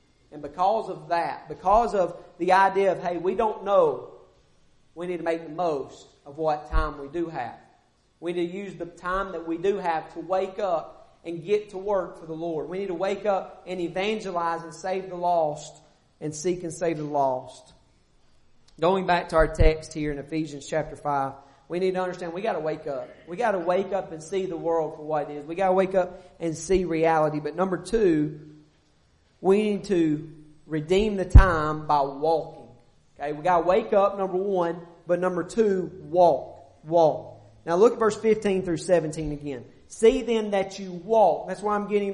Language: English